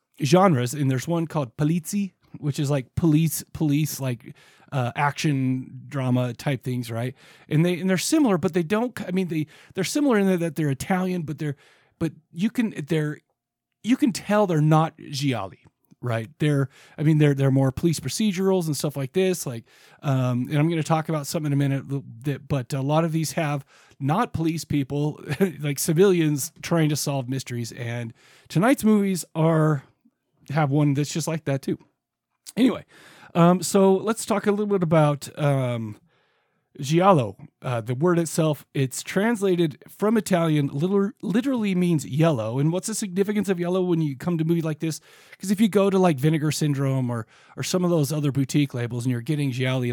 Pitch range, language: 135-175 Hz, English